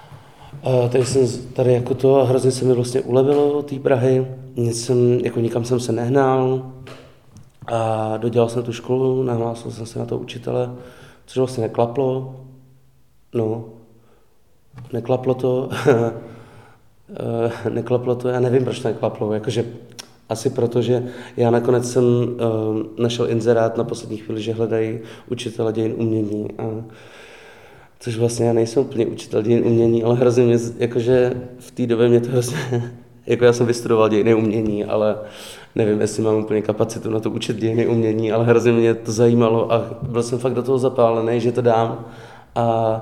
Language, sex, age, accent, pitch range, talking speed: Czech, male, 30-49, native, 115-125 Hz, 155 wpm